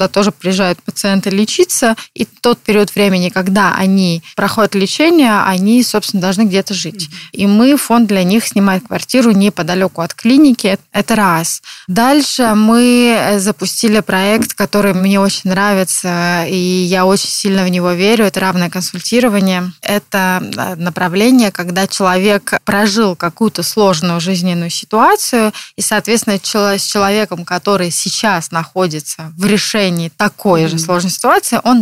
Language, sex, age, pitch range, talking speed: Russian, female, 20-39, 180-220 Hz, 130 wpm